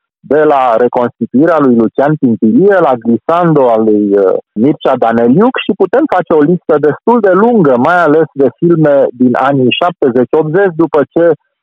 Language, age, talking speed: Romanian, 50-69, 150 wpm